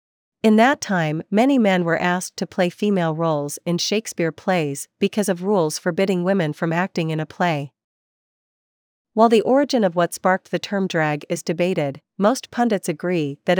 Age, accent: 40-59, American